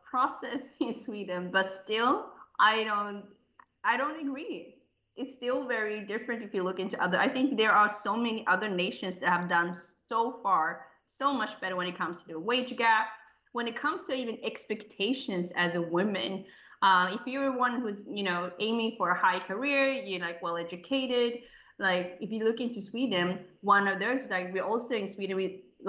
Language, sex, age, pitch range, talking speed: Swedish, female, 20-39, 180-235 Hz, 190 wpm